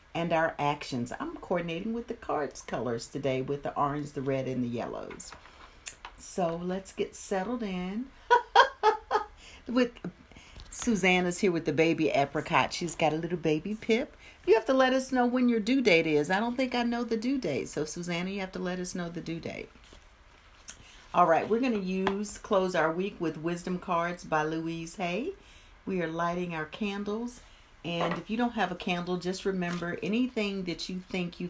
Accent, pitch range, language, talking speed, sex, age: American, 150-200 Hz, English, 190 wpm, female, 50-69